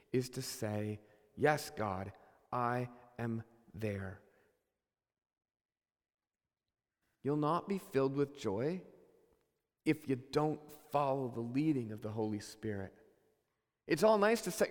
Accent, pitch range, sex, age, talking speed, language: American, 135-220 Hz, male, 40-59, 120 wpm, English